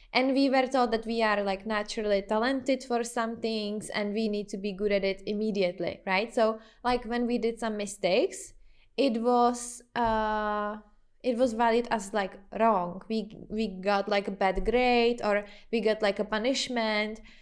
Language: English